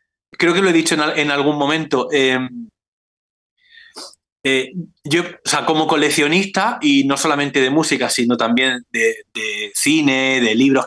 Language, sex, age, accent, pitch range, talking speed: Spanish, male, 30-49, Spanish, 140-190 Hz, 155 wpm